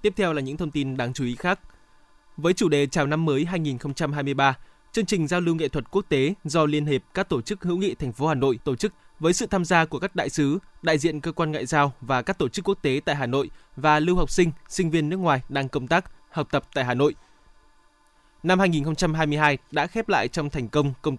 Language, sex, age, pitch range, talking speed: Vietnamese, male, 20-39, 140-175 Hz, 245 wpm